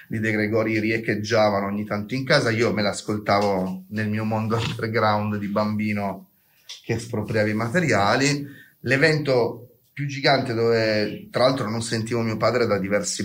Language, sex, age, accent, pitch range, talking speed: Italian, male, 30-49, native, 105-120 Hz, 150 wpm